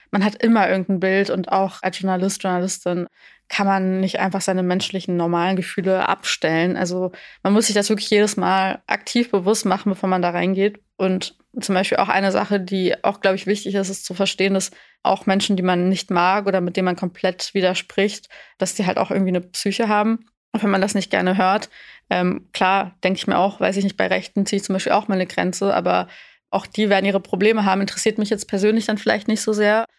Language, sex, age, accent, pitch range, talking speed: German, female, 20-39, German, 185-210 Hz, 225 wpm